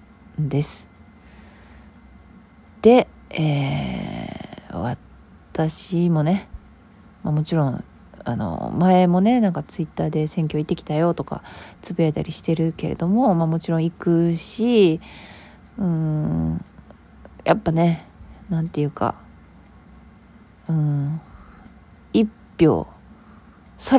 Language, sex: Japanese, female